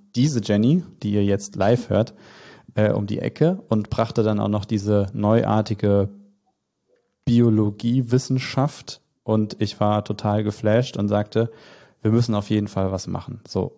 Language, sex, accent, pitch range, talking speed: German, male, German, 100-115 Hz, 150 wpm